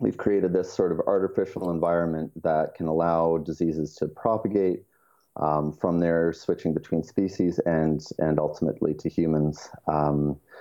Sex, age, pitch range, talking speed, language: male, 30-49, 75-85 Hz, 140 wpm, English